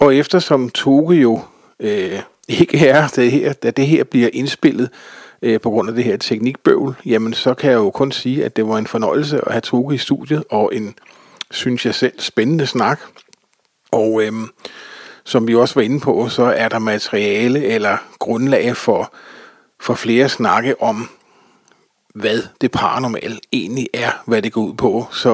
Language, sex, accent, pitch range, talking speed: Danish, male, native, 115-140 Hz, 180 wpm